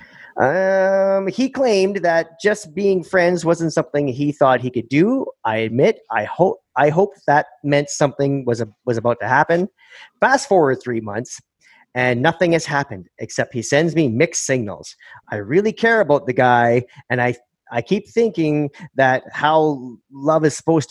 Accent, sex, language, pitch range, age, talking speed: American, male, English, 125-175 Hz, 30-49, 170 wpm